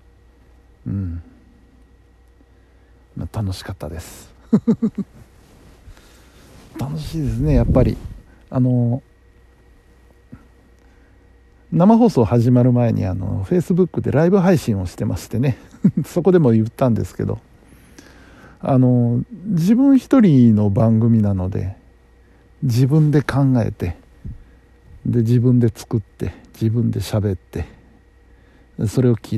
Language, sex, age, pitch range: Japanese, male, 60-79, 90-125 Hz